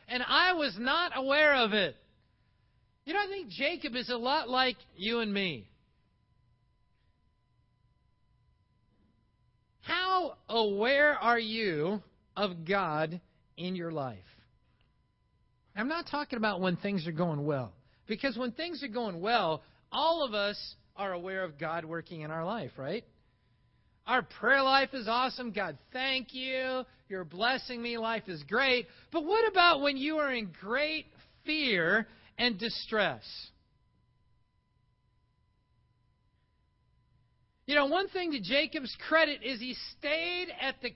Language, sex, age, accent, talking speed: English, male, 50-69, American, 135 wpm